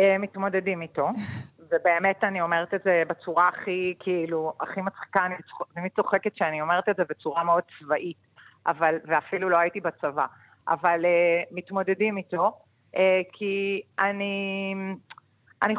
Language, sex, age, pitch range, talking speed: Hebrew, female, 40-59, 170-215 Hz, 120 wpm